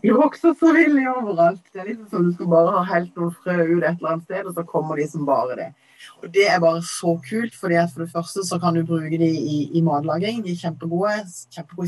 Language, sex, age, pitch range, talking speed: English, female, 30-49, 160-205 Hz, 265 wpm